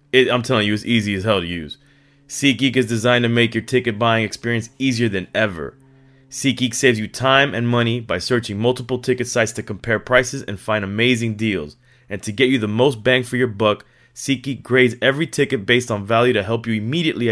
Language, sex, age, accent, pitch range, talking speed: English, male, 30-49, American, 105-130 Hz, 210 wpm